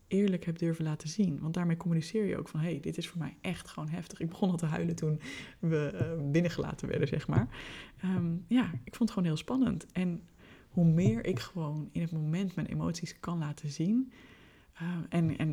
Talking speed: 215 wpm